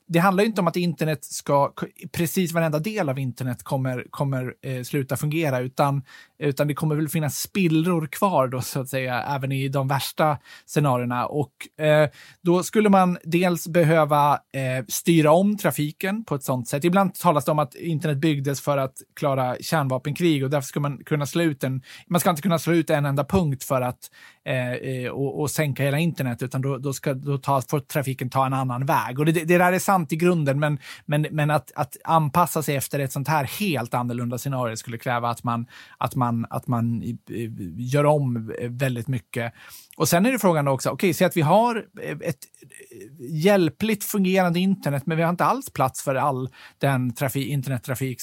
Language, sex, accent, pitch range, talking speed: Swedish, male, native, 130-170 Hz, 195 wpm